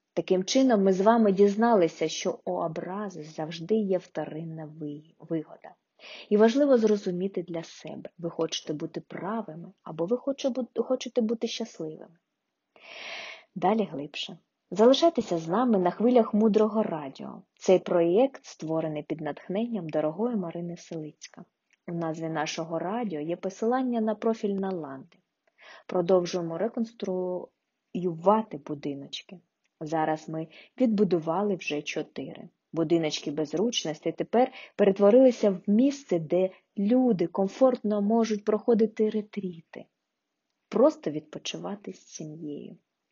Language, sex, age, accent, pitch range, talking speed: Ukrainian, female, 20-39, native, 160-215 Hz, 105 wpm